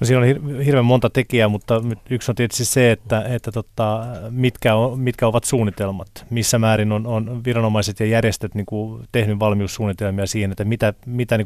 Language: Finnish